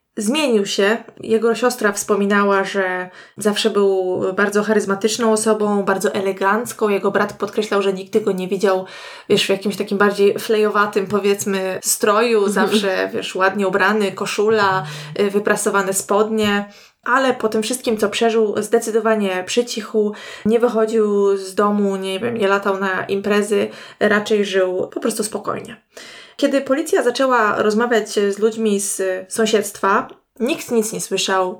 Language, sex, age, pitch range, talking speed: Polish, female, 20-39, 200-225 Hz, 135 wpm